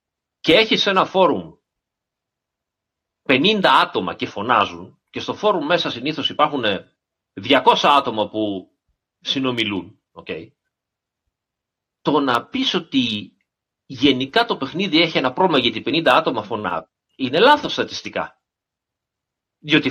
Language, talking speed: Greek, 110 wpm